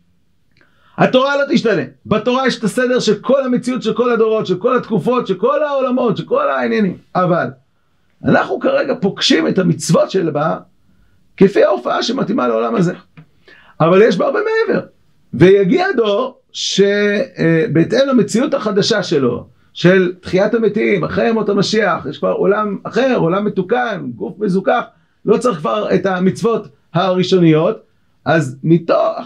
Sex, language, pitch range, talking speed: male, Hebrew, 165-235 Hz, 140 wpm